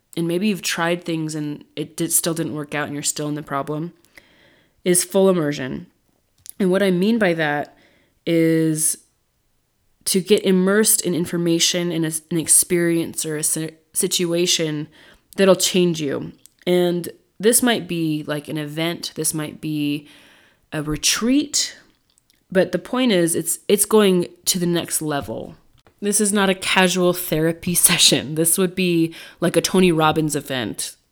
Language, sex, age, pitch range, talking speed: English, female, 20-39, 155-185 Hz, 155 wpm